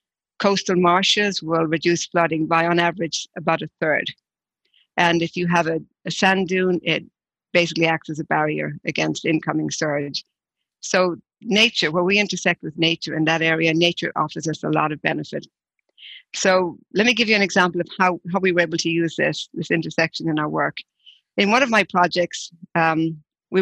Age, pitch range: 60-79, 160-185 Hz